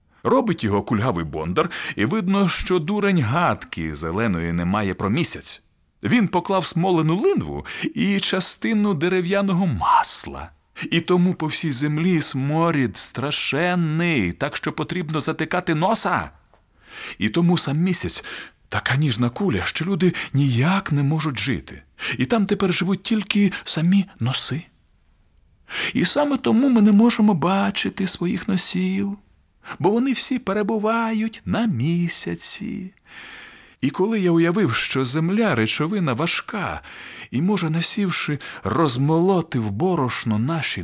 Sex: male